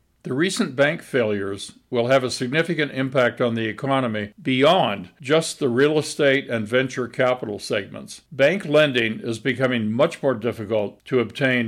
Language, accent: English, American